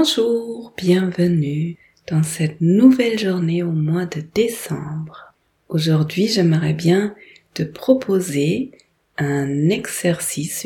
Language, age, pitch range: French, 30-49, 155-185 Hz